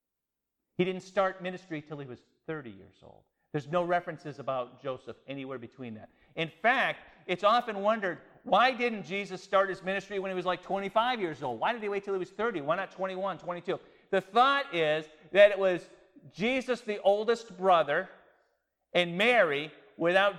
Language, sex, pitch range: English, male, 155-205 Hz